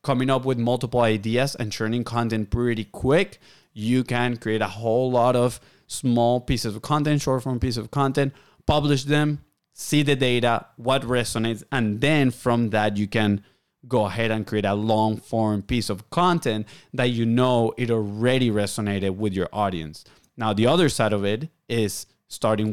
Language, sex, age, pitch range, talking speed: English, male, 30-49, 110-130 Hz, 175 wpm